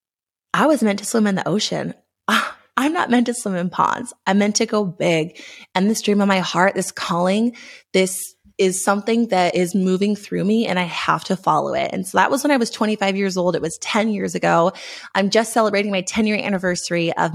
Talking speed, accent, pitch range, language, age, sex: 220 wpm, American, 175-220 Hz, English, 20-39, female